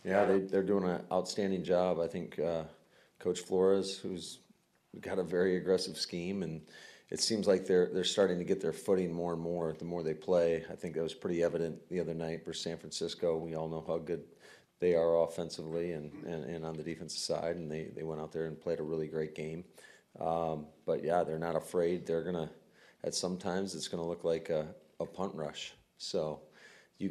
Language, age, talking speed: English, 40-59, 215 wpm